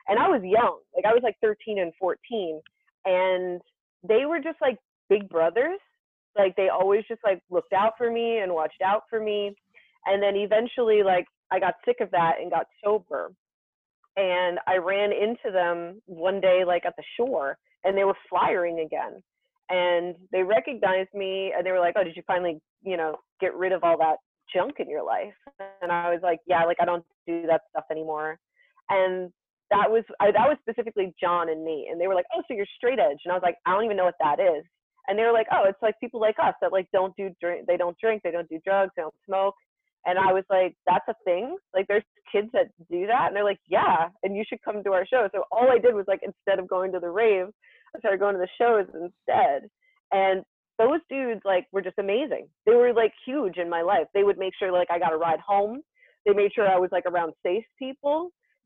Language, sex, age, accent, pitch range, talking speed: English, female, 30-49, American, 180-225 Hz, 230 wpm